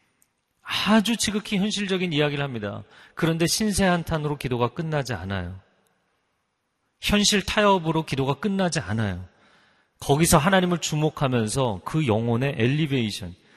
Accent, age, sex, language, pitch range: native, 40-59, male, Korean, 115-175 Hz